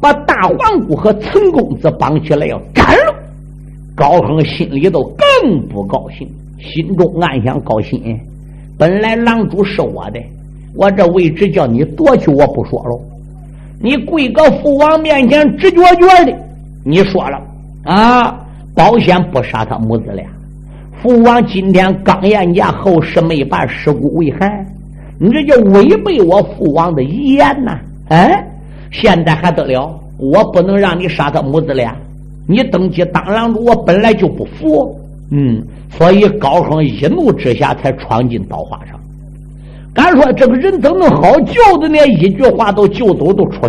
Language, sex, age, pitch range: Chinese, male, 50-69, 145-215 Hz